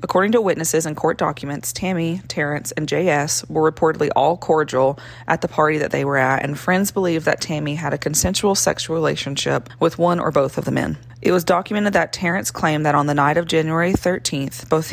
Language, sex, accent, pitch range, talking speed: English, female, American, 140-170 Hz, 210 wpm